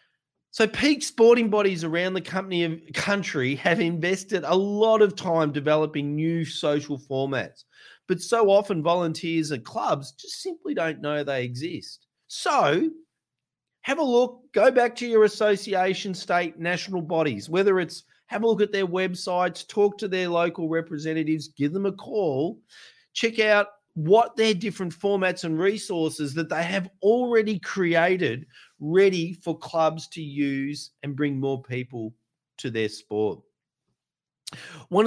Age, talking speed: 30-49, 145 wpm